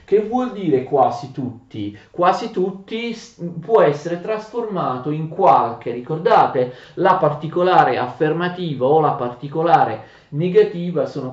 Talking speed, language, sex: 110 wpm, Italian, male